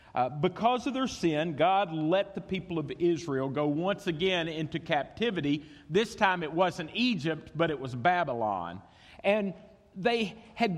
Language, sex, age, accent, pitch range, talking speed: English, male, 50-69, American, 155-235 Hz, 155 wpm